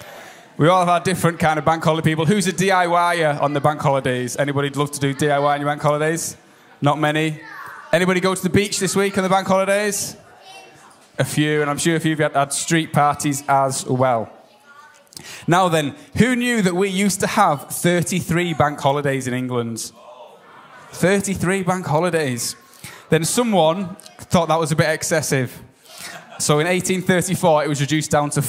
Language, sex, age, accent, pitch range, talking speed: English, male, 10-29, British, 145-185 Hz, 180 wpm